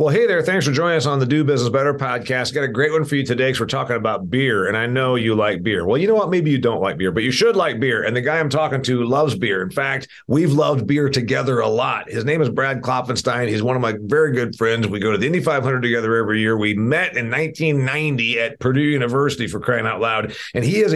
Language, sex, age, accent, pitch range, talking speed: English, male, 50-69, American, 120-155 Hz, 275 wpm